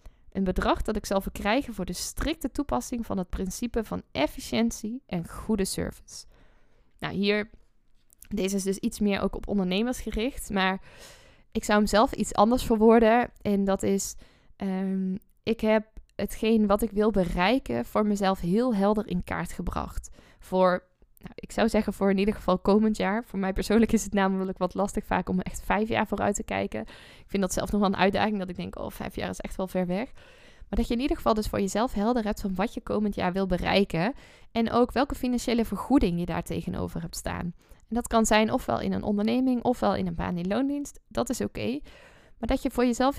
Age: 20-39